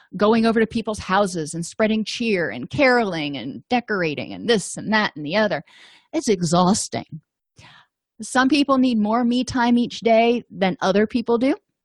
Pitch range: 190-235 Hz